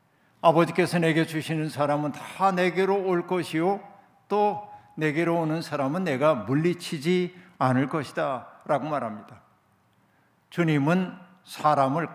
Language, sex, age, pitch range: Korean, male, 60-79, 150-180 Hz